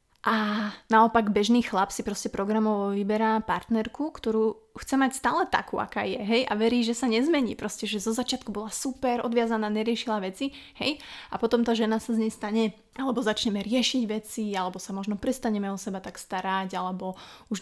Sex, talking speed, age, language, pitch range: female, 180 wpm, 20-39, Slovak, 200-230 Hz